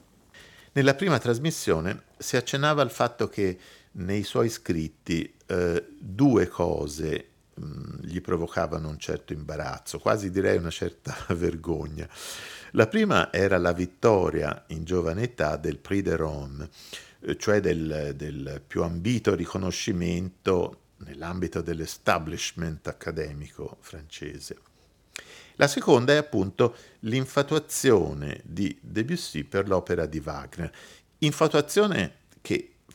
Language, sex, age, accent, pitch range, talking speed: Italian, male, 50-69, native, 80-115 Hz, 105 wpm